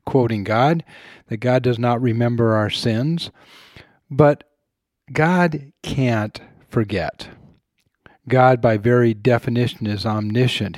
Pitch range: 115-140 Hz